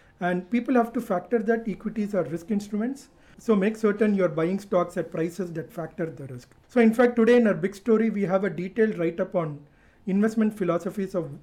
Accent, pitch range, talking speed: Indian, 165-205 Hz, 210 wpm